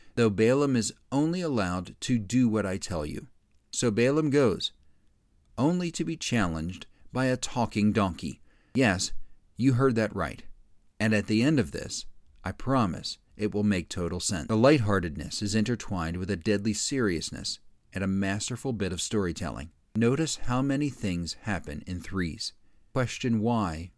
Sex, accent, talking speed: male, American, 160 wpm